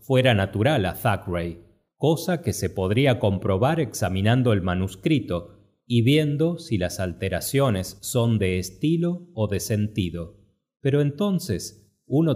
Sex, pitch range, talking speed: male, 95-135 Hz, 125 wpm